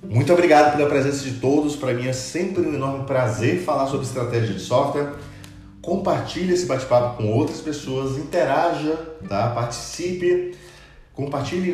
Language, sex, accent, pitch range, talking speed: Portuguese, male, Brazilian, 115-145 Hz, 140 wpm